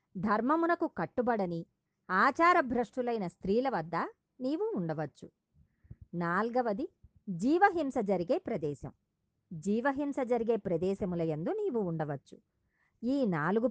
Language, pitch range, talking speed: Telugu, 185-270 Hz, 90 wpm